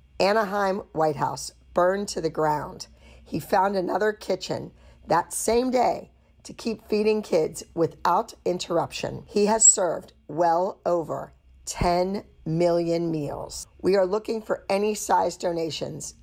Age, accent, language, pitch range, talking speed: 50-69, American, English, 160-200 Hz, 130 wpm